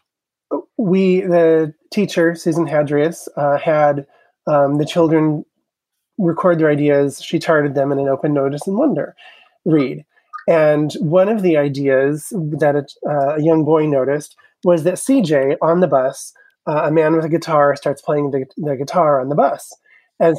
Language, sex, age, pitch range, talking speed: English, male, 30-49, 145-190 Hz, 160 wpm